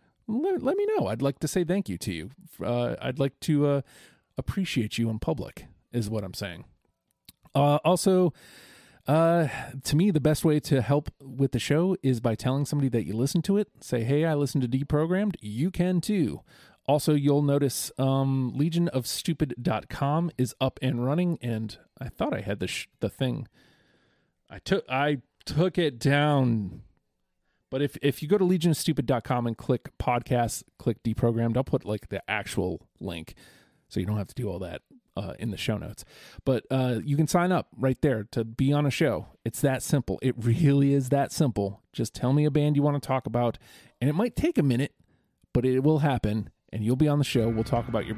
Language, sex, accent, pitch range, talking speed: English, male, American, 115-150 Hz, 200 wpm